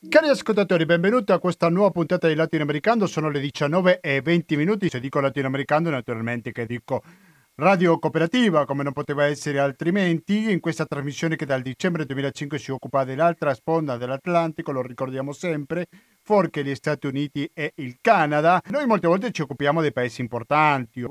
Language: Italian